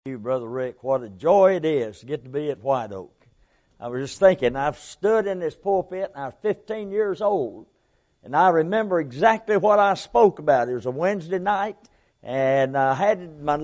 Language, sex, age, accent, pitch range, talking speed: English, male, 60-79, American, 145-195 Hz, 205 wpm